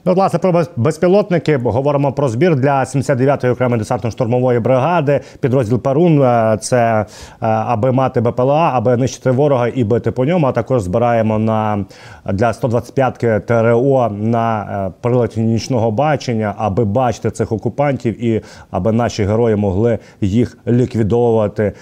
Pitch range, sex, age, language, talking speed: 110-150 Hz, male, 30-49, Ukrainian, 135 wpm